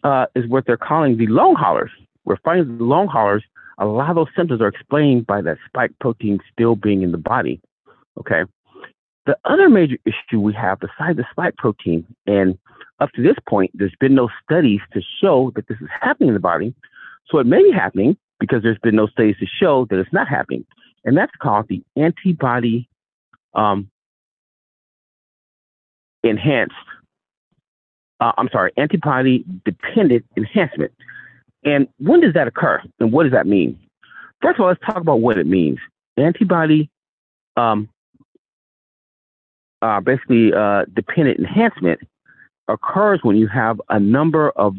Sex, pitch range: male, 100-140 Hz